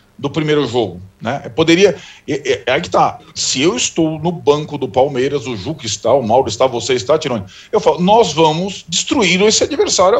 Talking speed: 205 wpm